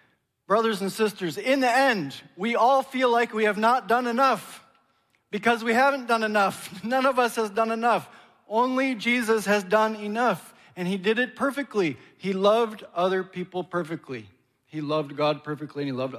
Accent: American